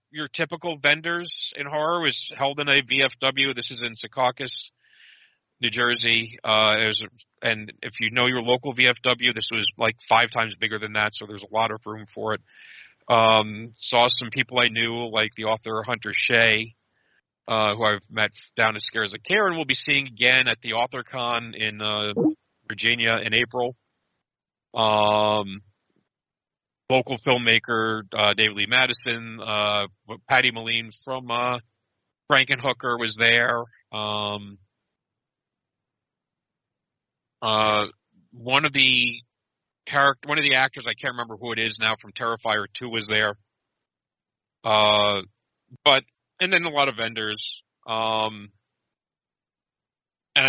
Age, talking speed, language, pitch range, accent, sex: 40-59, 145 wpm, English, 110-125 Hz, American, male